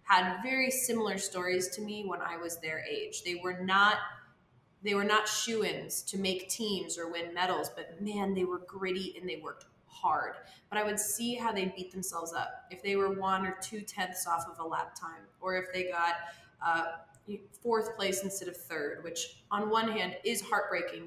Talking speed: 200 wpm